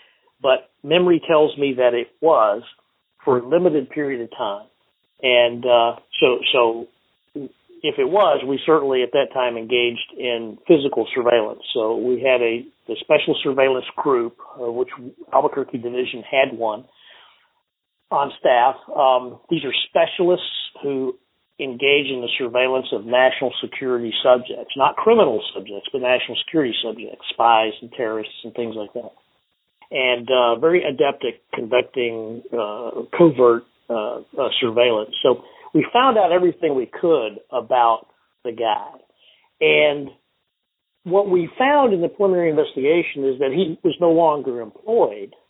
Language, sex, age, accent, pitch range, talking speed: English, male, 50-69, American, 120-170 Hz, 140 wpm